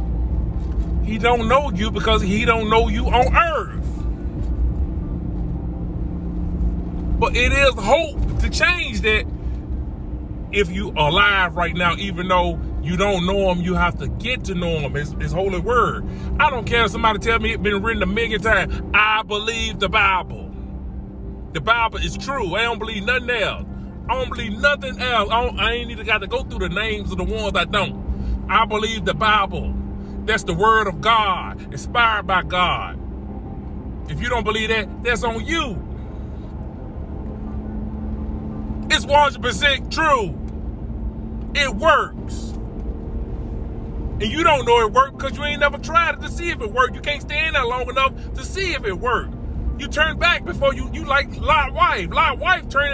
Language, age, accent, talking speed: English, 30-49, American, 170 wpm